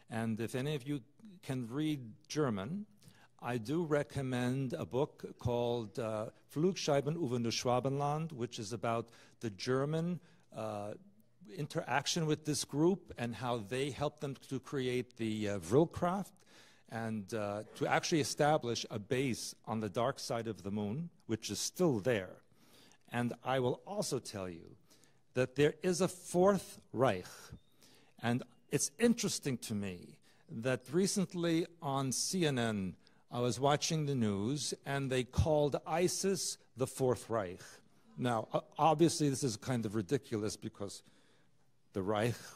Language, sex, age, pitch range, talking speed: Russian, male, 50-69, 105-150 Hz, 140 wpm